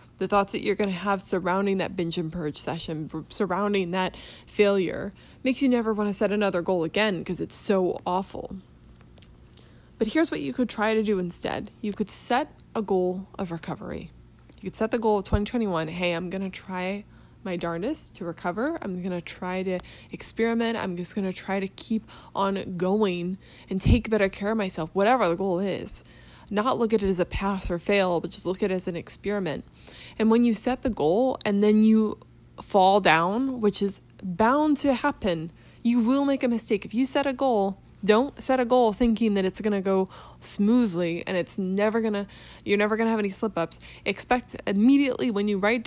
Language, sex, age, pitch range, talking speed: English, female, 10-29, 185-225 Hz, 205 wpm